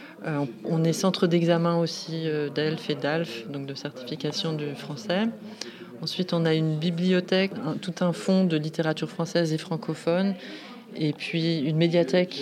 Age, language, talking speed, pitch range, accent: 30-49, French, 155 wpm, 150-175 Hz, French